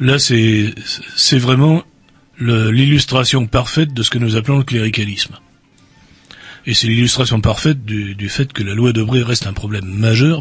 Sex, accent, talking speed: male, French, 175 wpm